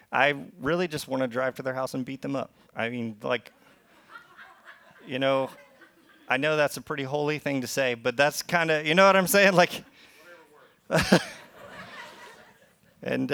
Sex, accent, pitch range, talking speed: male, American, 115-145 Hz, 170 wpm